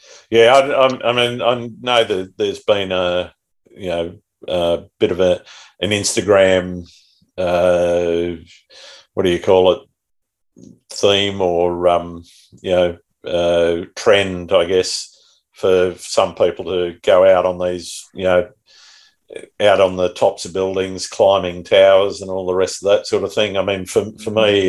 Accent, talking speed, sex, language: Australian, 160 wpm, male, English